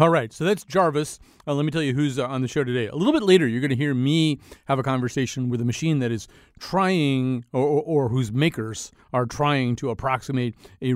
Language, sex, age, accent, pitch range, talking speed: English, male, 40-59, American, 110-140 Hz, 240 wpm